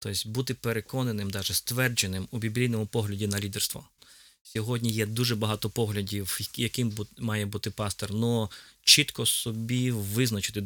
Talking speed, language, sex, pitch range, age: 130 wpm, Ukrainian, male, 105-120 Hz, 20-39